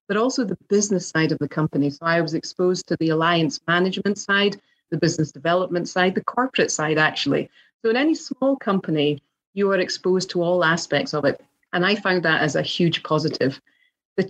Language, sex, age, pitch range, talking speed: English, female, 30-49, 160-200 Hz, 195 wpm